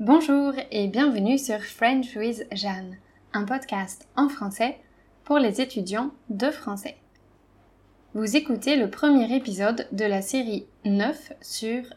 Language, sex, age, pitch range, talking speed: French, female, 20-39, 205-255 Hz, 130 wpm